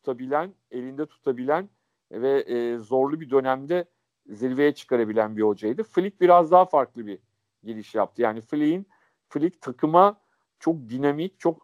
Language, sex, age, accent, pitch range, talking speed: Turkish, male, 50-69, native, 125-170 Hz, 135 wpm